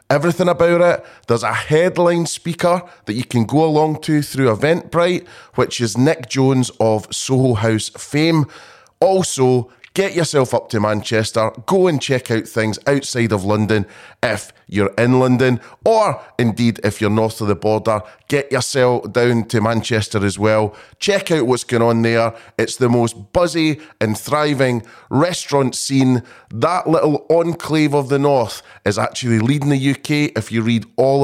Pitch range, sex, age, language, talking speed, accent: 110-150 Hz, male, 30-49, English, 165 wpm, British